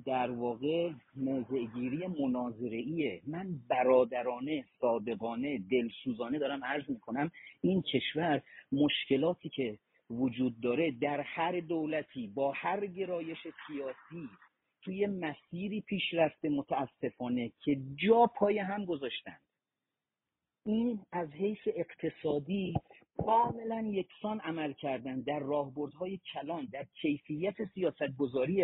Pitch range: 140-200 Hz